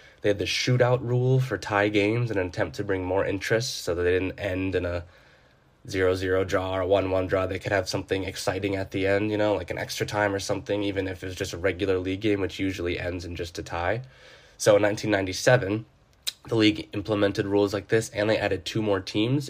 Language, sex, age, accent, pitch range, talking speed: English, male, 20-39, American, 95-105 Hz, 230 wpm